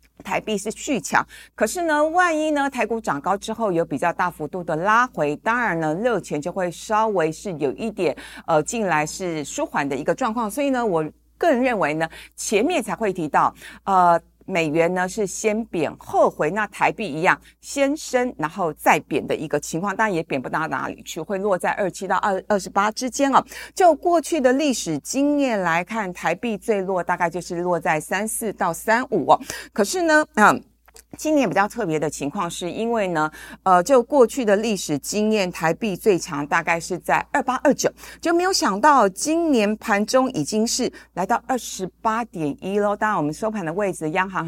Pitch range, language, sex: 165-240 Hz, Chinese, female